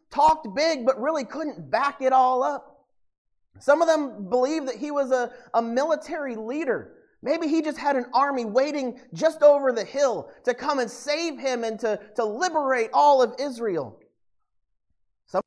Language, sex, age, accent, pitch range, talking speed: English, male, 30-49, American, 220-285 Hz, 170 wpm